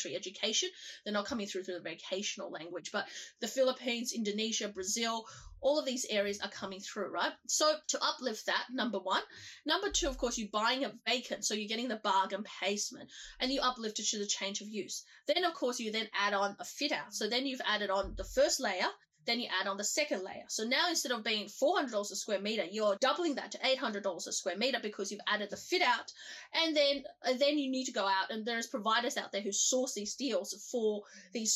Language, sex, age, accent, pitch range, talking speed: English, female, 20-39, Australian, 205-275 Hz, 225 wpm